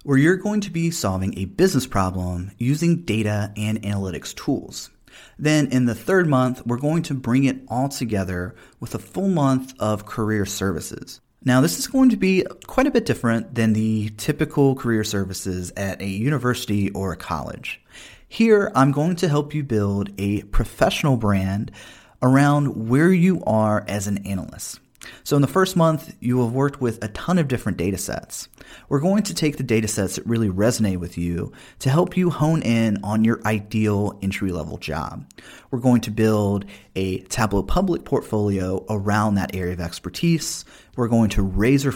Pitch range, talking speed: 100-140 Hz, 180 wpm